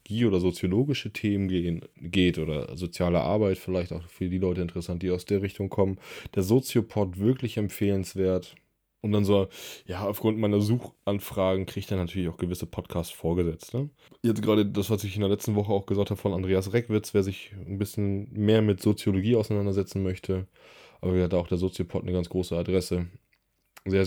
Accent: German